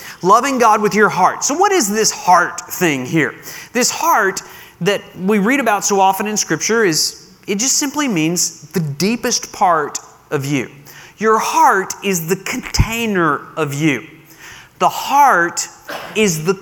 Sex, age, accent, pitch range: male, 30-49, American, 155-220 Hz